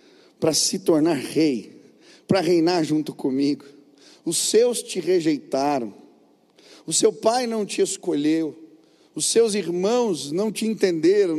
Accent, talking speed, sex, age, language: Brazilian, 125 wpm, male, 50-69, Portuguese